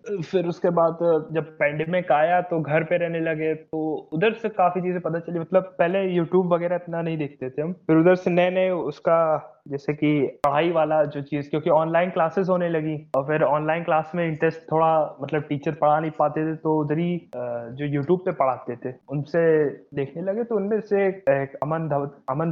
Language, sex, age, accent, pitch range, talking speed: Hindi, male, 20-39, native, 150-180 Hz, 195 wpm